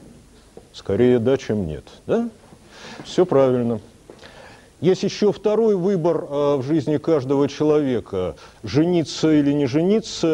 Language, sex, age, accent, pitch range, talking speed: Russian, male, 50-69, native, 110-150 Hz, 105 wpm